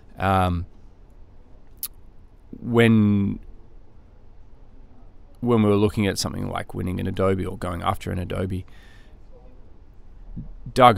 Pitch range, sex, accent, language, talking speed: 95-105 Hz, male, Australian, English, 100 wpm